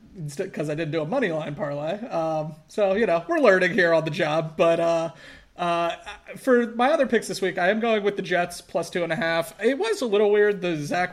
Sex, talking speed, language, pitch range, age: male, 245 wpm, English, 150-185 Hz, 30-49